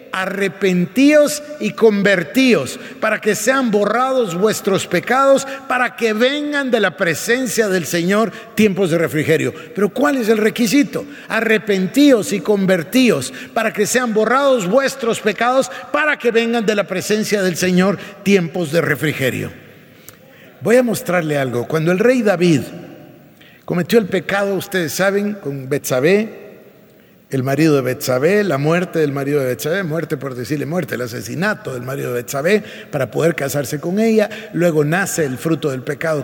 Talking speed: 150 wpm